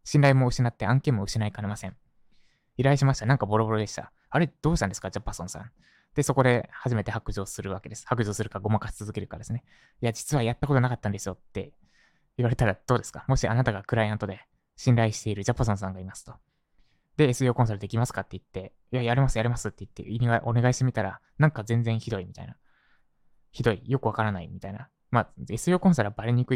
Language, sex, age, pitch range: Japanese, male, 20-39, 105-140 Hz